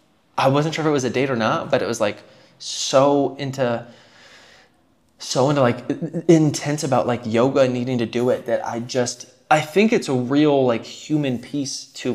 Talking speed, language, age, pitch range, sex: 200 wpm, English, 20-39, 115-145 Hz, male